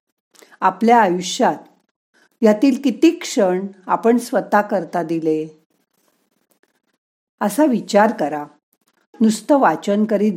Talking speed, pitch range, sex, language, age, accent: 80 wpm, 185-235 Hz, female, Marathi, 50-69, native